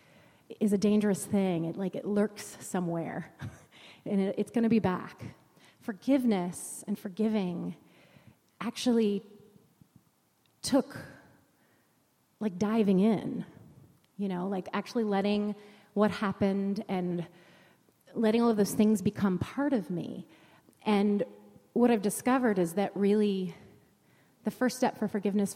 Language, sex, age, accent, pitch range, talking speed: English, female, 30-49, American, 190-215 Hz, 125 wpm